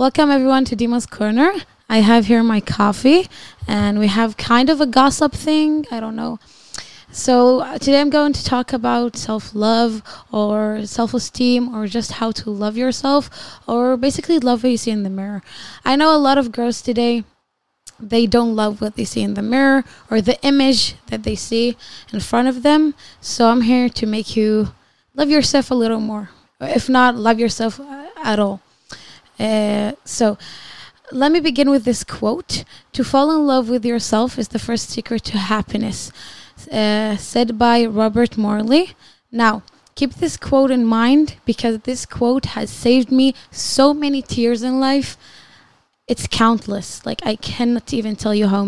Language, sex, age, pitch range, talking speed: Hebrew, female, 10-29, 220-265 Hz, 175 wpm